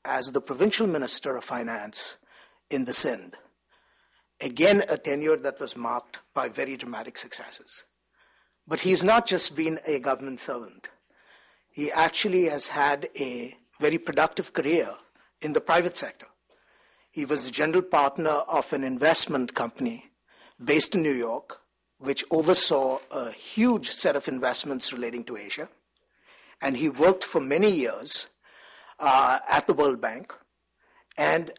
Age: 60-79